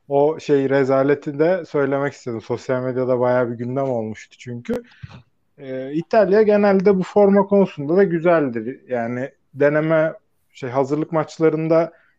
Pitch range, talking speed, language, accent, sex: 130-180 Hz, 130 wpm, Turkish, native, male